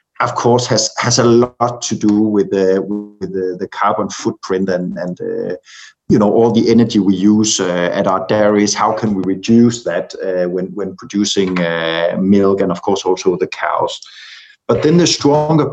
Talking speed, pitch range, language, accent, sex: 190 wpm, 100-130 Hz, English, Danish, male